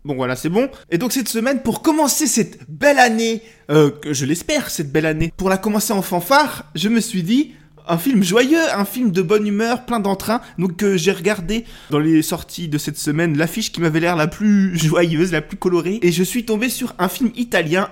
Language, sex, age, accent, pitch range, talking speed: French, male, 20-39, French, 155-215 Hz, 225 wpm